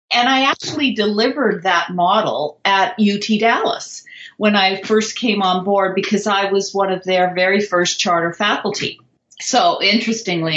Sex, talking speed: female, 155 wpm